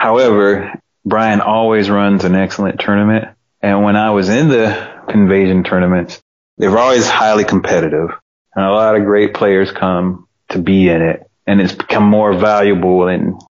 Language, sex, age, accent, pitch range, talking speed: English, male, 30-49, American, 90-105 Hz, 165 wpm